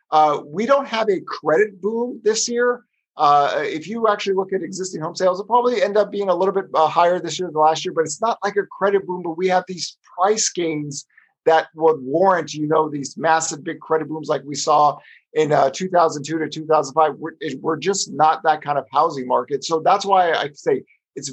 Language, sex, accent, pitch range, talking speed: English, male, American, 145-185 Hz, 220 wpm